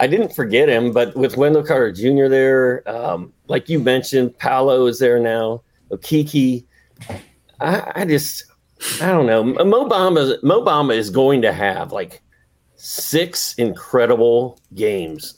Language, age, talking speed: English, 40-59, 140 wpm